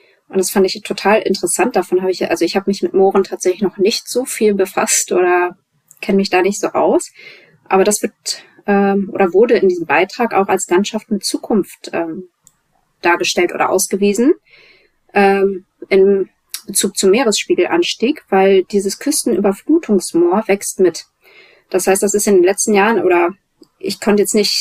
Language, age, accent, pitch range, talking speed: German, 20-39, German, 185-235 Hz, 170 wpm